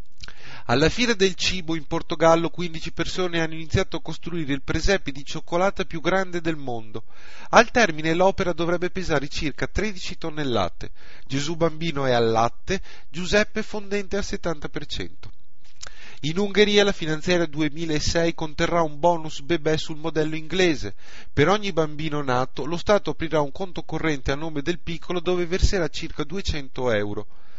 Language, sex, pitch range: Italian, male, 140-180 Hz